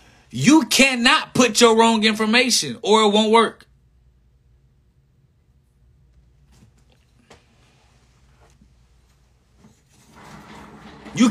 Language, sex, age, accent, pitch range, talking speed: English, male, 30-49, American, 190-245 Hz, 60 wpm